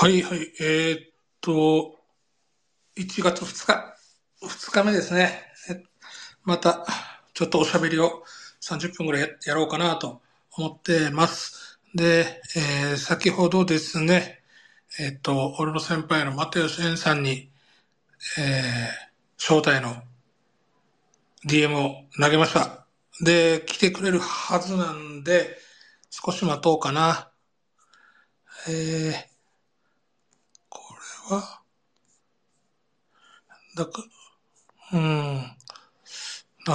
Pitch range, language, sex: 150-180 Hz, Japanese, male